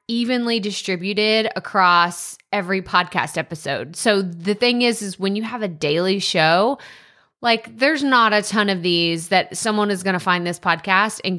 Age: 20-39